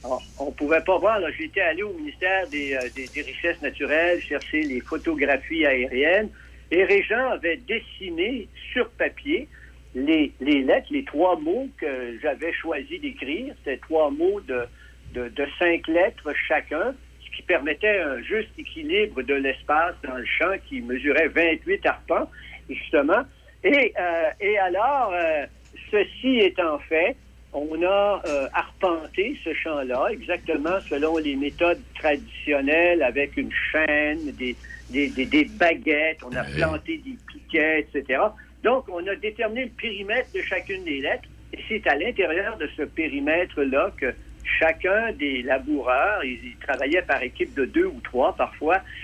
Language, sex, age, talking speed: French, male, 60-79, 155 wpm